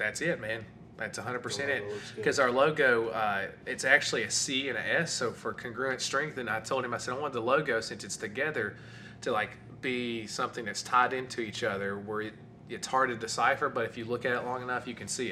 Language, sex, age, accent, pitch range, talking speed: English, male, 20-39, American, 105-120 Hz, 235 wpm